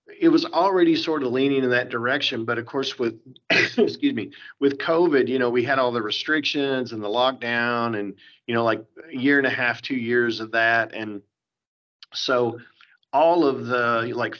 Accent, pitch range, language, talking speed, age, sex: American, 115-135 Hz, English, 190 wpm, 40-59, male